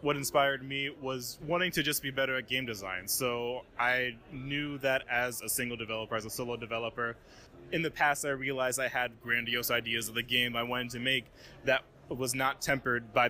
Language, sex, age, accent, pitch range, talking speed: English, male, 20-39, American, 115-130 Hz, 205 wpm